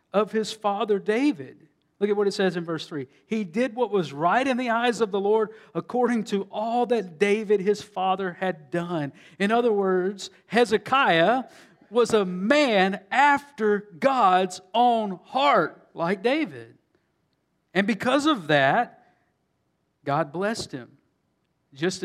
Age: 50-69